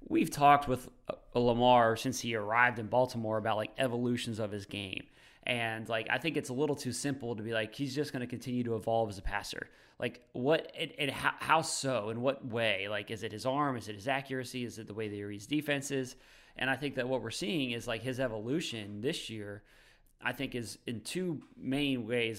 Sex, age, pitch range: male, 30-49, 110-135 Hz